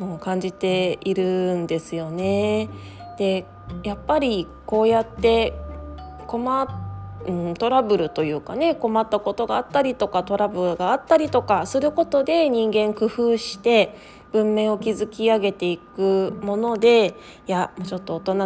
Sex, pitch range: female, 180-230 Hz